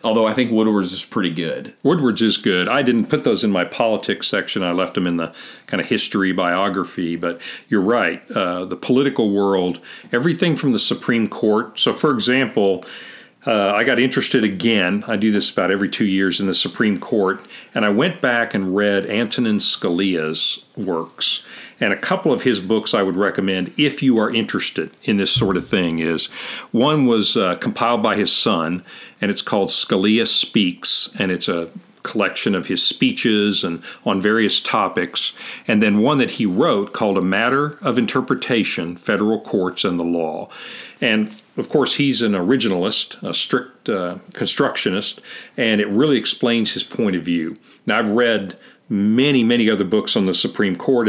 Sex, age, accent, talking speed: male, 40-59, American, 180 wpm